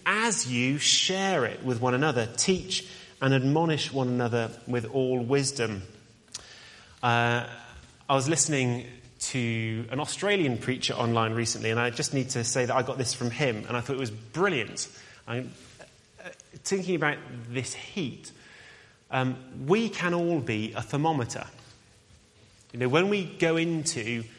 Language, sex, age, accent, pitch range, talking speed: English, male, 30-49, British, 120-145 Hz, 150 wpm